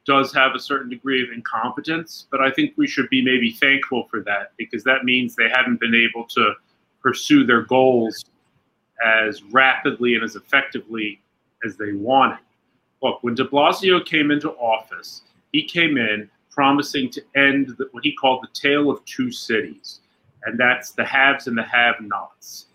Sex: male